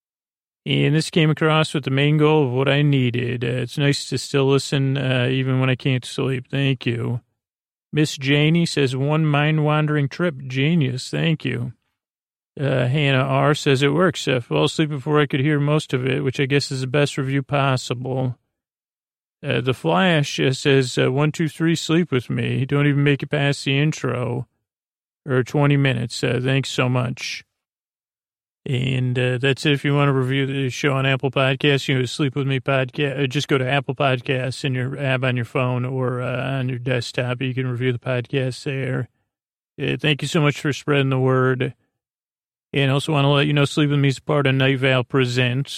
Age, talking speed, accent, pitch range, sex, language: 40-59, 200 wpm, American, 125-145 Hz, male, English